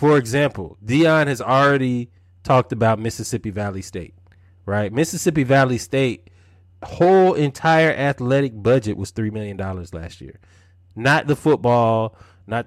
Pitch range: 100-150 Hz